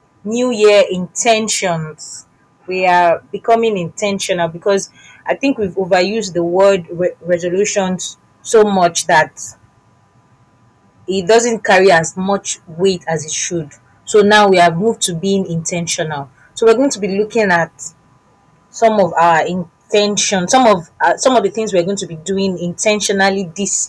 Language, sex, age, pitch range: English, female, 30-49, 175-210 Hz